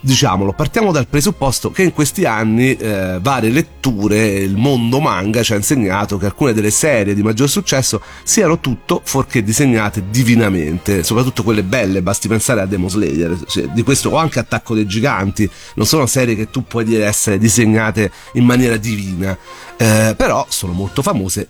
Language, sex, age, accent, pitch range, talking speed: Italian, male, 40-59, native, 100-135 Hz, 165 wpm